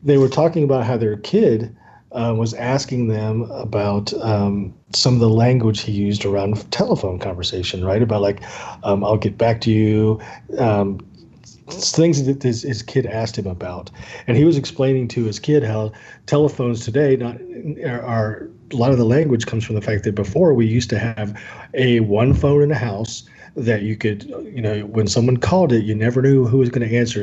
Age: 40-59